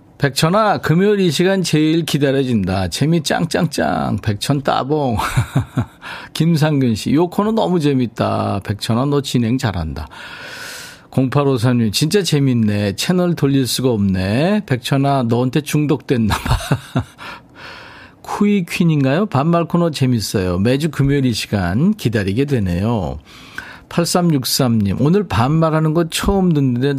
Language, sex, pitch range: Korean, male, 105-160 Hz